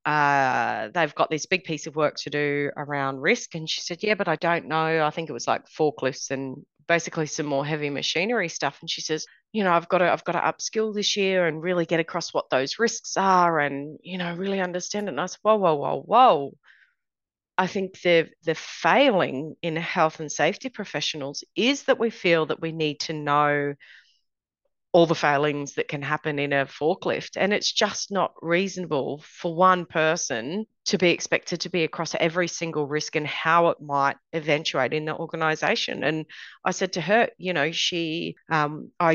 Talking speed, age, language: 200 wpm, 30-49, English